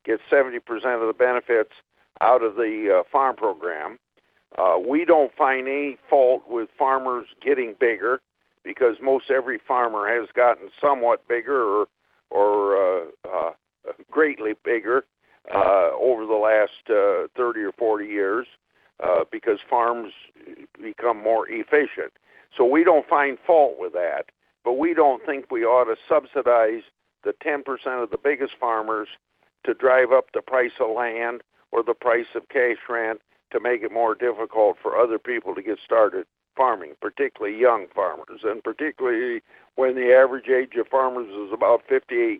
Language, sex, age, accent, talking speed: English, male, 50-69, American, 155 wpm